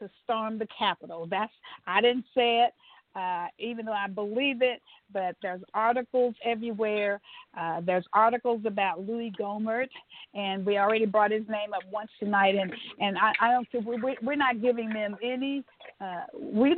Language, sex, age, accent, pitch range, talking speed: English, female, 50-69, American, 205-245 Hz, 170 wpm